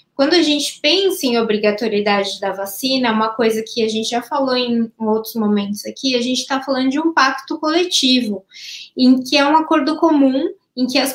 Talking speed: 200 wpm